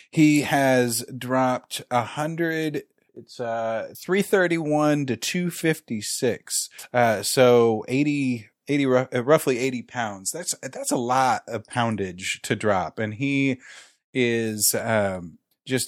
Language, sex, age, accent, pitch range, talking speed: English, male, 30-49, American, 105-130 Hz, 130 wpm